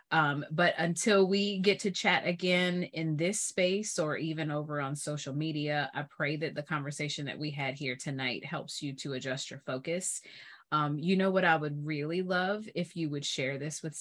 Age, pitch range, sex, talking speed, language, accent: 30-49, 145-185 Hz, female, 200 wpm, English, American